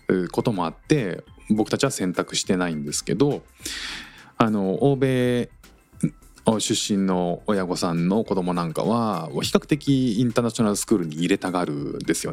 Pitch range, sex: 85-130 Hz, male